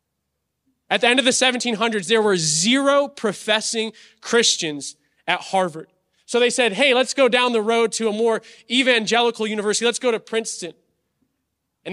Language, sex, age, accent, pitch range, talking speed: English, male, 20-39, American, 180-225 Hz, 160 wpm